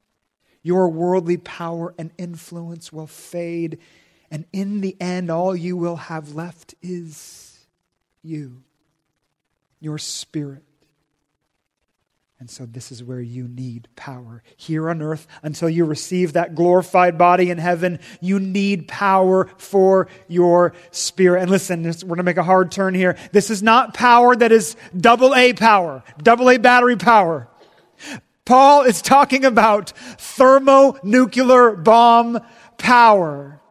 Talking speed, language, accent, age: 135 wpm, English, American, 40-59